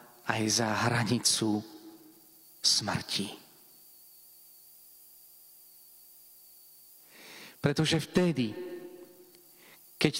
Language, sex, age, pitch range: Slovak, male, 40-59, 115-160 Hz